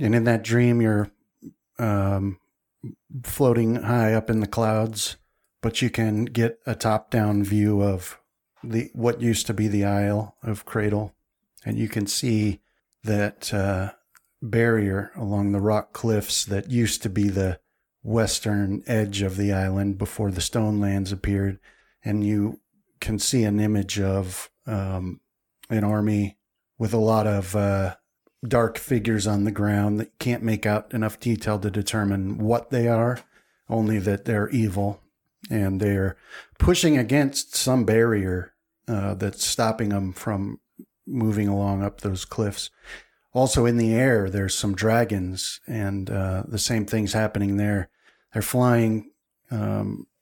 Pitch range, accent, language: 100-115 Hz, American, English